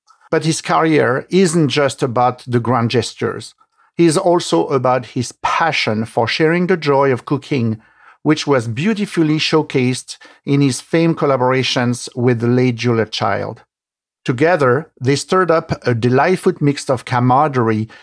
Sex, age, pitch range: male, 50-69, 125-165 Hz